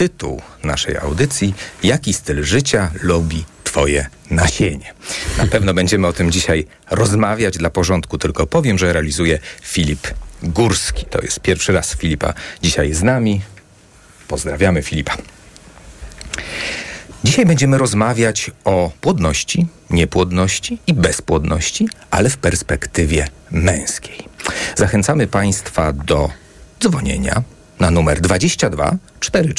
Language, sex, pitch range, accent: Polish, male, 75-100 Hz, native